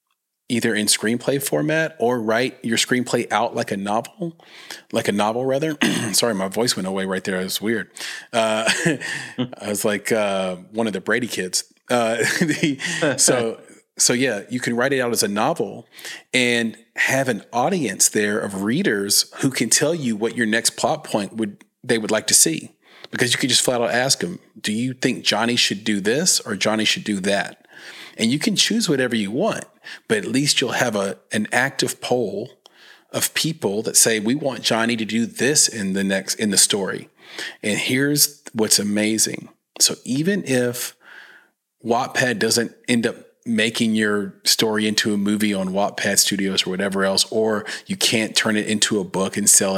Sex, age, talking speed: male, 40-59, 185 wpm